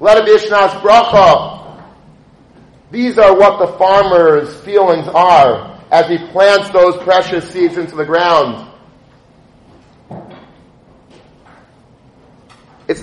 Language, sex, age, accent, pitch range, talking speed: English, male, 40-59, American, 175-200 Hz, 80 wpm